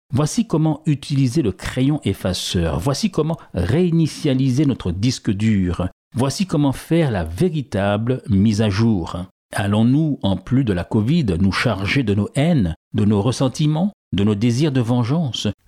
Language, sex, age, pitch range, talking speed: French, male, 60-79, 100-155 Hz, 150 wpm